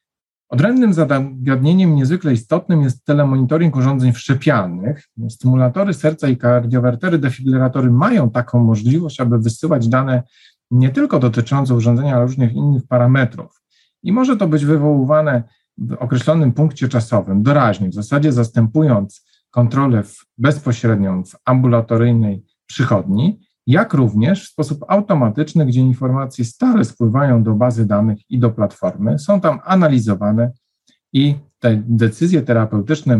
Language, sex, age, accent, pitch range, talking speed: Polish, male, 40-59, native, 115-145 Hz, 120 wpm